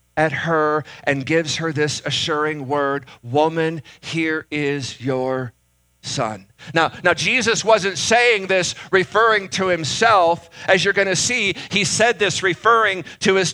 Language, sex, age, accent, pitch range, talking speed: English, male, 50-69, American, 155-200 Hz, 140 wpm